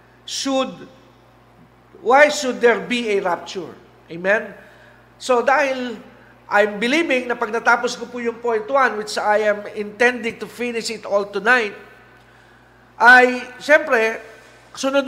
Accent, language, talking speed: native, Filipino, 125 wpm